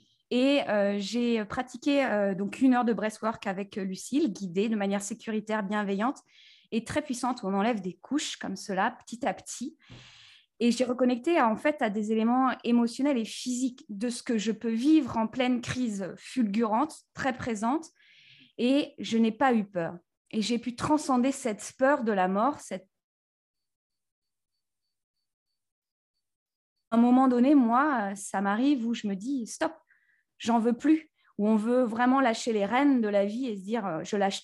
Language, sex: French, female